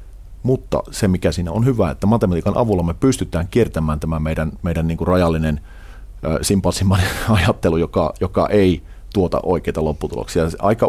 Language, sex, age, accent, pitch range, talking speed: Finnish, male, 40-59, native, 80-100 Hz, 155 wpm